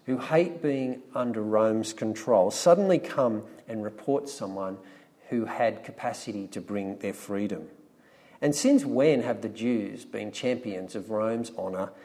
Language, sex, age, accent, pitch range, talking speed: English, male, 50-69, Australian, 105-155 Hz, 145 wpm